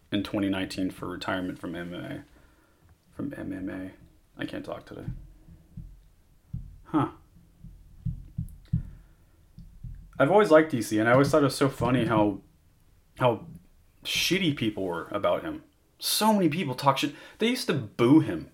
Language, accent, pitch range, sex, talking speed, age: English, American, 75-125 Hz, male, 135 wpm, 30-49